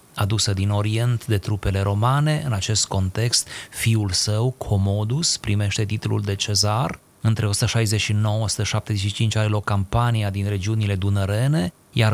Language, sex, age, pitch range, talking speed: Romanian, male, 30-49, 100-120 Hz, 125 wpm